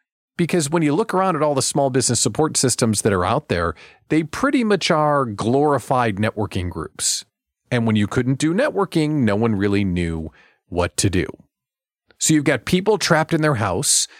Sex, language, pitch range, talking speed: male, English, 115-170 Hz, 185 wpm